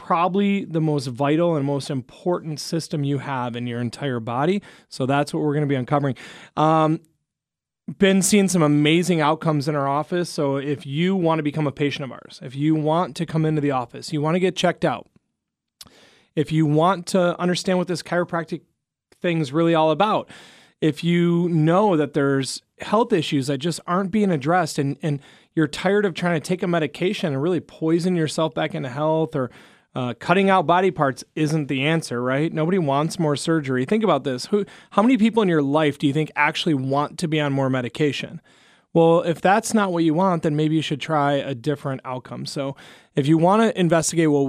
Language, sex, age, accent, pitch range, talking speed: English, male, 30-49, American, 145-175 Hz, 205 wpm